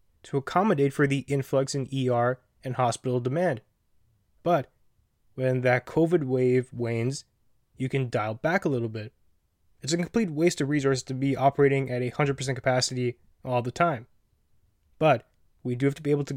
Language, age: English, 20-39